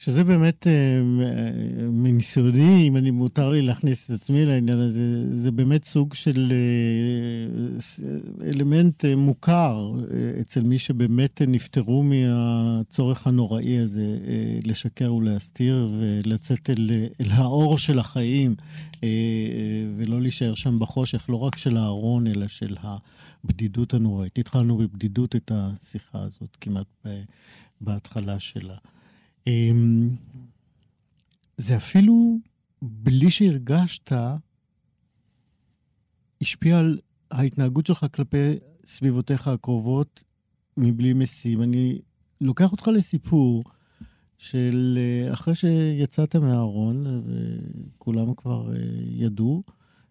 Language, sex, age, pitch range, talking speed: Hebrew, male, 50-69, 110-140 Hz, 95 wpm